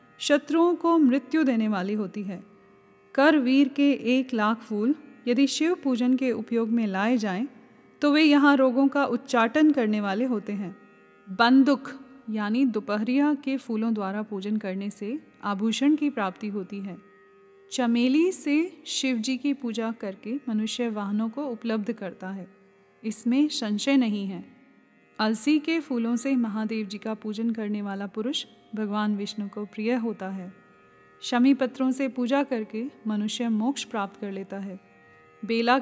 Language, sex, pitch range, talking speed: Hindi, female, 210-265 Hz, 150 wpm